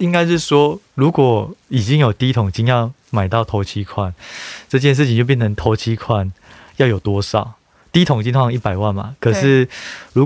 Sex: male